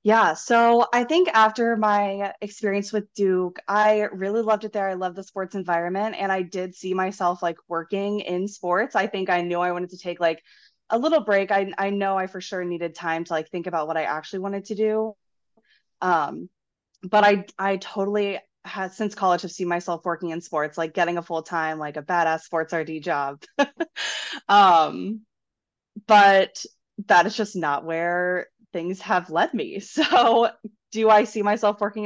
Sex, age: female, 20-39